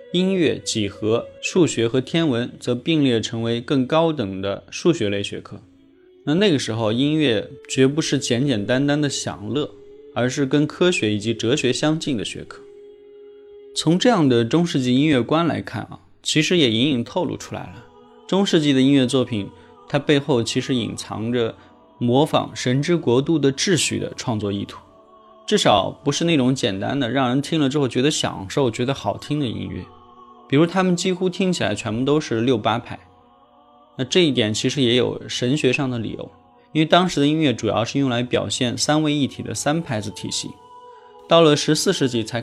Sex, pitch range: male, 115-155 Hz